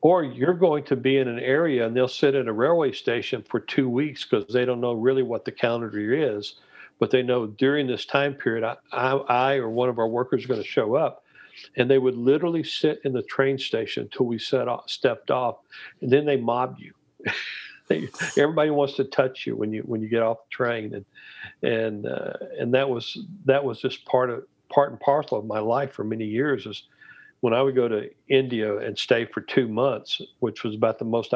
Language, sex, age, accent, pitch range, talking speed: English, male, 50-69, American, 110-135 Hz, 225 wpm